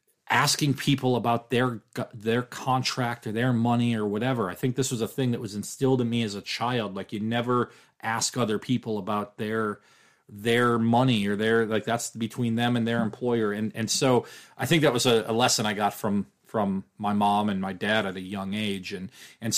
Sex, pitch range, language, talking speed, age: male, 105-120 Hz, English, 210 wpm, 40-59